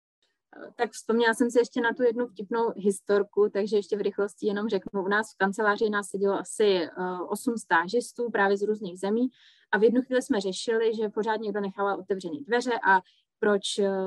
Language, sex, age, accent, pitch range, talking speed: Czech, female, 20-39, native, 195-225 Hz, 185 wpm